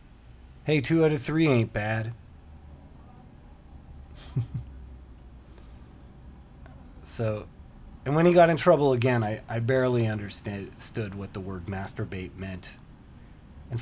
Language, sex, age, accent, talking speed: English, male, 30-49, American, 110 wpm